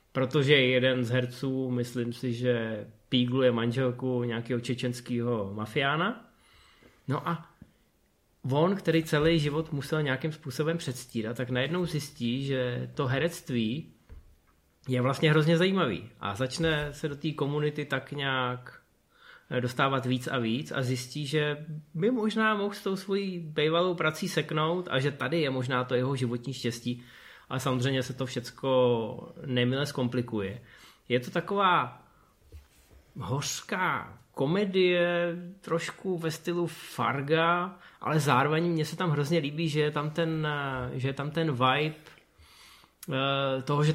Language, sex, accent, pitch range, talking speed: Czech, male, native, 125-160 Hz, 135 wpm